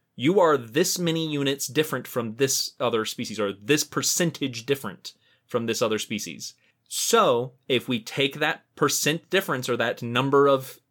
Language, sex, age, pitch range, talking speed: English, male, 30-49, 115-145 Hz, 160 wpm